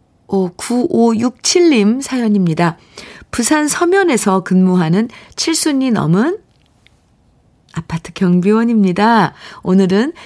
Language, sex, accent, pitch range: Korean, female, native, 165-230 Hz